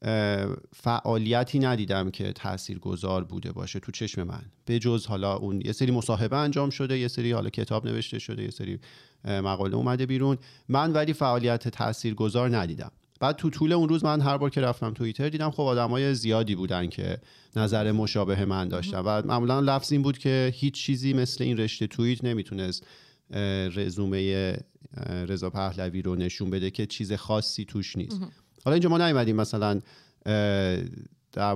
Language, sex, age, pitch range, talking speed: Persian, male, 40-59, 100-130 Hz, 160 wpm